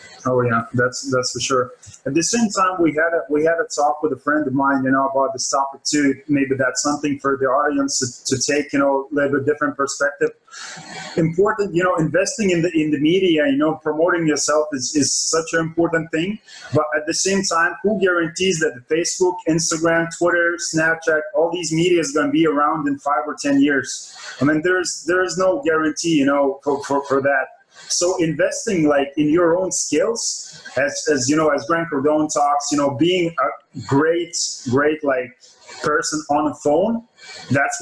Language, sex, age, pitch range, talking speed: English, male, 20-39, 140-175 Hz, 200 wpm